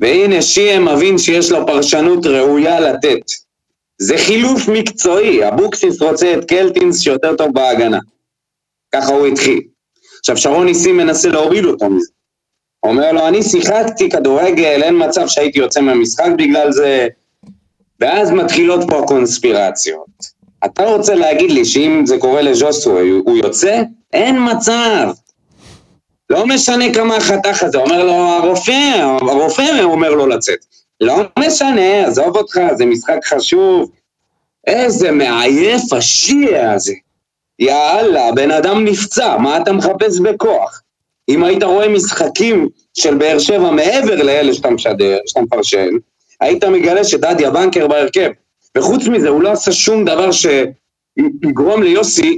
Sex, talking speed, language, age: male, 130 wpm, Hebrew, 30-49